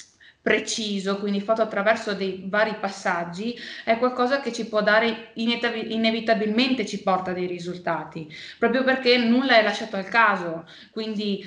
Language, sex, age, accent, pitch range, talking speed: Italian, female, 20-39, native, 195-225 Hz, 135 wpm